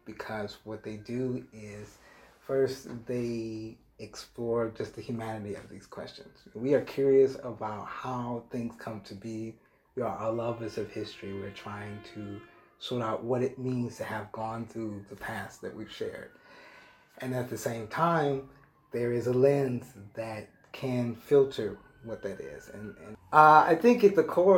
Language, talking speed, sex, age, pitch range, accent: English, 170 wpm, male, 30-49, 110-135 Hz, American